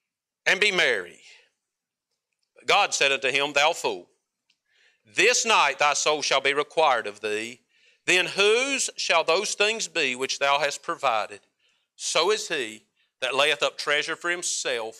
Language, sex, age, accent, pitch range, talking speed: English, male, 50-69, American, 170-250 Hz, 150 wpm